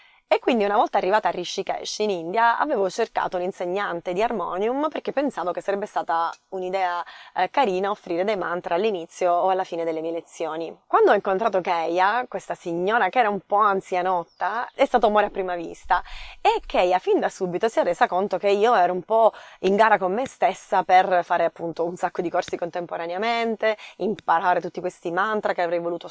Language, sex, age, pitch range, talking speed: Italian, female, 20-39, 180-230 Hz, 190 wpm